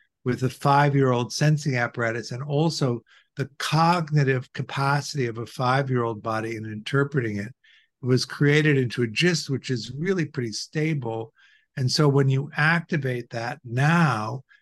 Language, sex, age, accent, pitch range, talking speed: English, male, 50-69, American, 115-145 Hz, 145 wpm